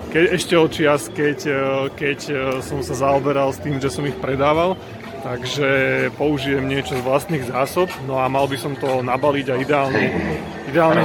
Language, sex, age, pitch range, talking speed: Slovak, male, 30-49, 130-150 Hz, 155 wpm